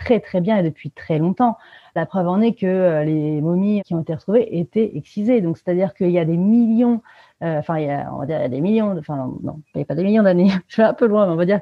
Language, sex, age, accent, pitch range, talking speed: French, female, 30-49, French, 175-225 Hz, 285 wpm